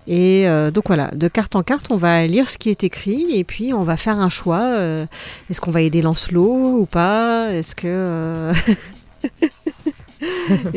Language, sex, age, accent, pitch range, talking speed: French, female, 40-59, French, 175-225 Hz, 185 wpm